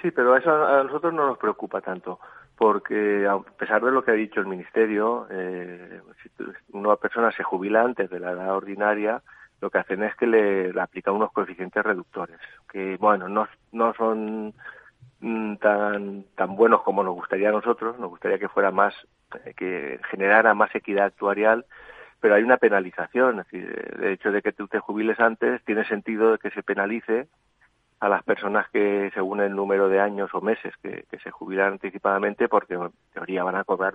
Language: Spanish